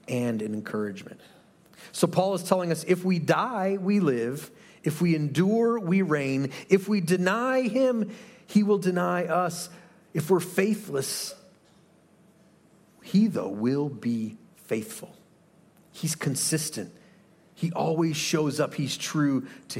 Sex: male